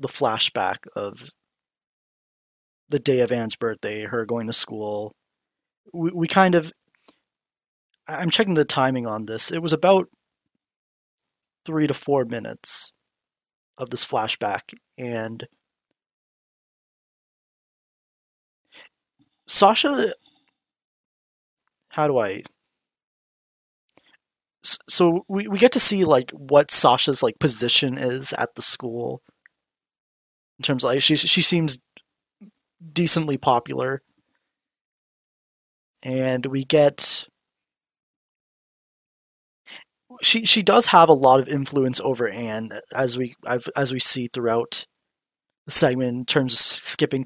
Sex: male